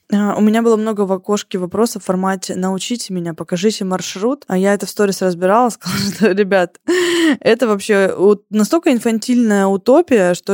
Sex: female